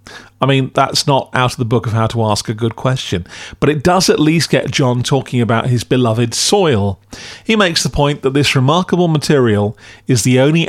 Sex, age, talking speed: male, 40-59, 215 wpm